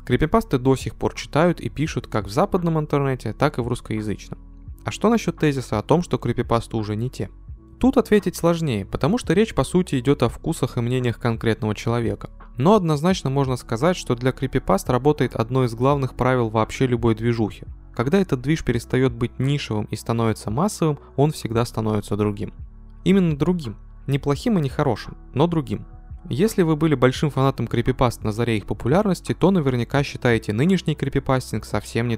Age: 20-39